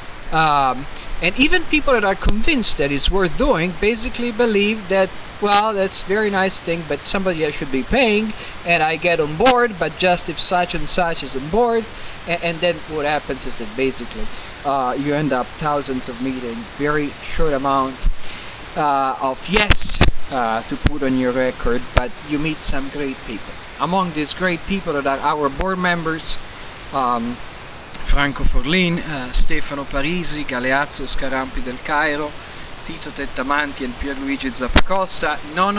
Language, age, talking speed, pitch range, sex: Italian, 50-69, 165 wpm, 135-185 Hz, male